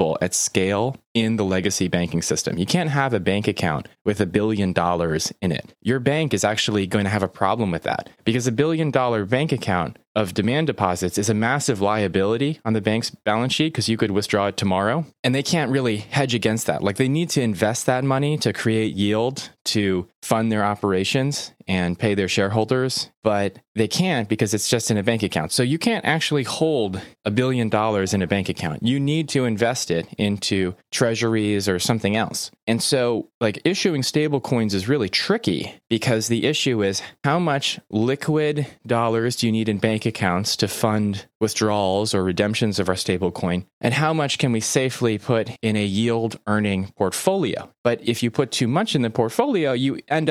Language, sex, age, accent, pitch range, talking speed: English, male, 20-39, American, 100-130 Hz, 195 wpm